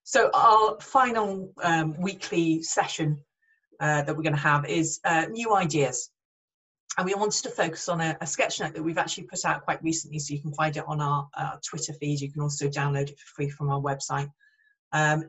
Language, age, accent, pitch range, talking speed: English, 30-49, British, 155-205 Hz, 210 wpm